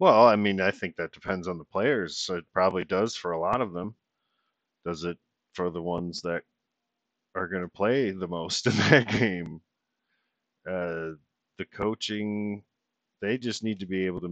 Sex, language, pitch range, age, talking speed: male, English, 85-95 Hz, 40-59, 180 wpm